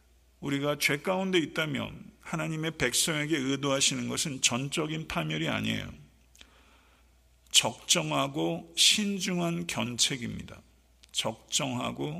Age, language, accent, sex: 50-69, Korean, native, male